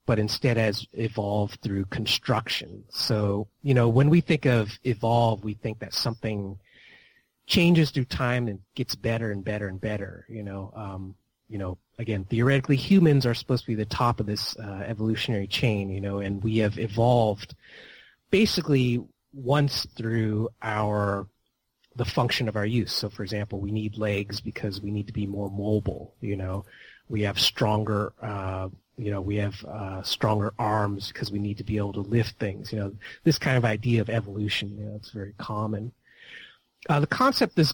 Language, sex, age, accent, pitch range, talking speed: English, male, 30-49, American, 105-125 Hz, 180 wpm